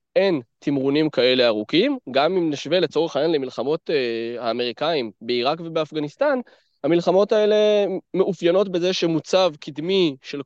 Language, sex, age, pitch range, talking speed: Hebrew, male, 20-39, 145-190 Hz, 120 wpm